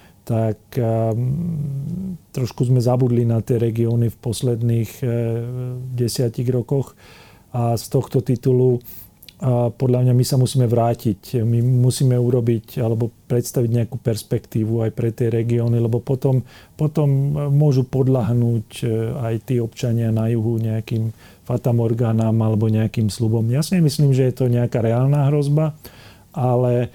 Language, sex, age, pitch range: Slovak, male, 40-59, 115-130 Hz